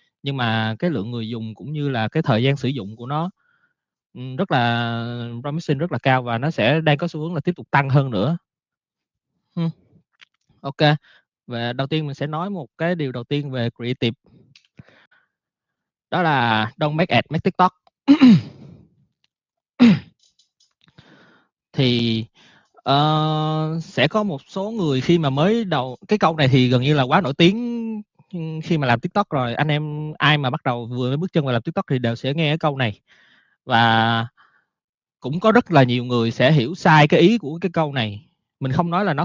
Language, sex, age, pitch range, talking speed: Vietnamese, male, 20-39, 125-170 Hz, 190 wpm